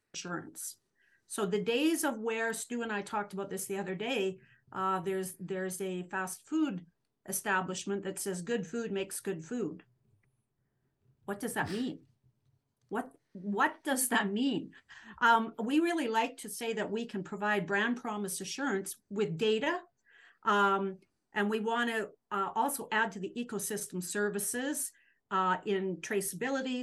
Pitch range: 190-235 Hz